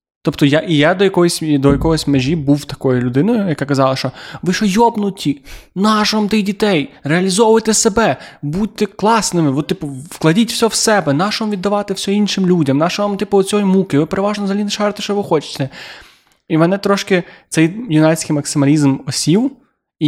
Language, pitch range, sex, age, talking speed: Ukrainian, 135-180 Hz, male, 20-39, 170 wpm